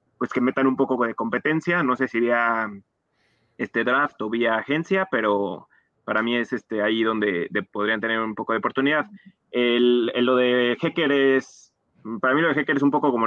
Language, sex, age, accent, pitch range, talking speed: Spanish, male, 30-49, Mexican, 110-130 Hz, 200 wpm